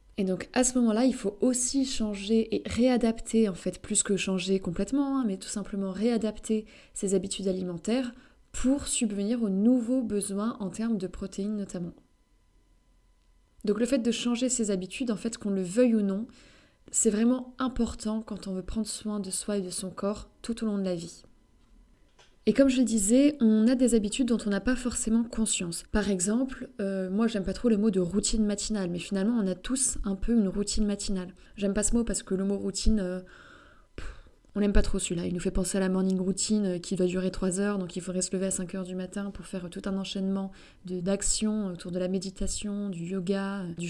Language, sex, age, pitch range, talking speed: French, female, 20-39, 190-225 Hz, 215 wpm